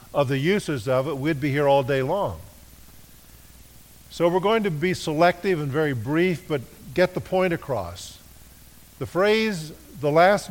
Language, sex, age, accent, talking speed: English, male, 50-69, American, 165 wpm